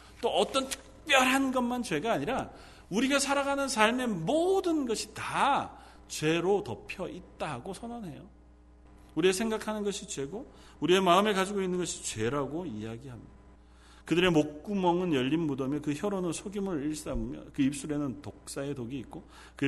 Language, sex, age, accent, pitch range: Korean, male, 40-59, native, 125-200 Hz